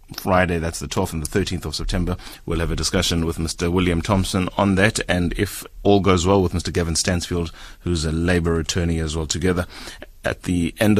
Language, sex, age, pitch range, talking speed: English, male, 30-49, 80-100 Hz, 205 wpm